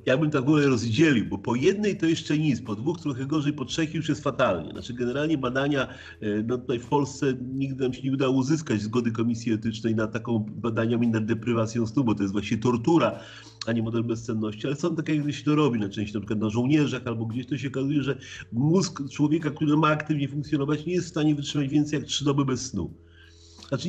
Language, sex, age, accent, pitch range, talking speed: Polish, male, 40-59, native, 115-150 Hz, 225 wpm